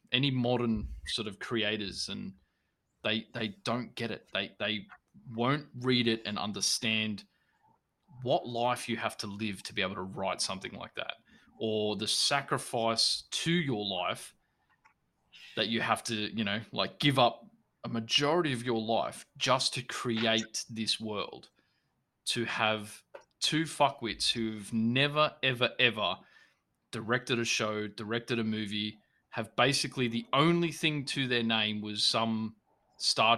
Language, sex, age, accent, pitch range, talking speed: English, male, 20-39, Australian, 105-125 Hz, 145 wpm